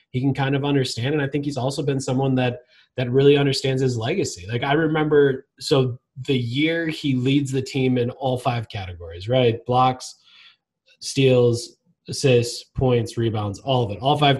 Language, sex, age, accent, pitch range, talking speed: English, male, 20-39, American, 120-140 Hz, 180 wpm